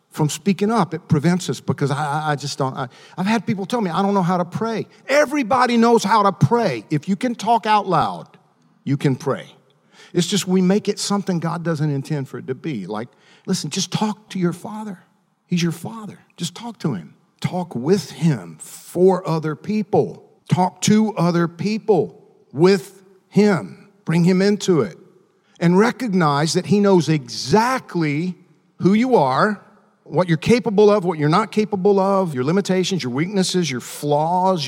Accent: American